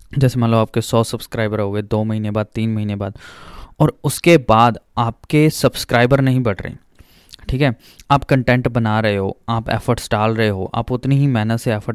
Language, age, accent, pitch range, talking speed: Hindi, 20-39, native, 110-130 Hz, 200 wpm